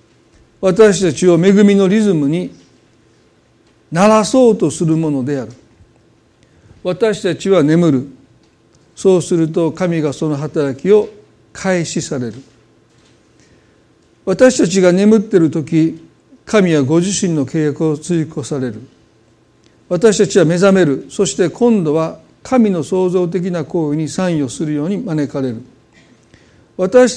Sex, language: male, Japanese